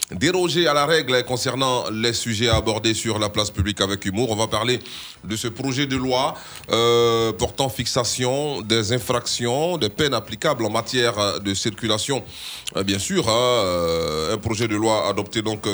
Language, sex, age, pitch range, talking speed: French, male, 30-49, 100-120 Hz, 155 wpm